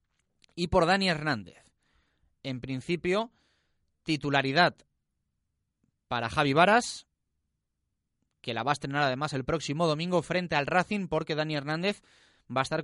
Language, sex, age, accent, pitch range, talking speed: Spanish, male, 30-49, Spanish, 115-155 Hz, 130 wpm